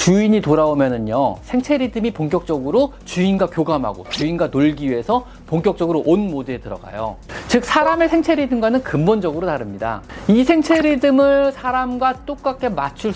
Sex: male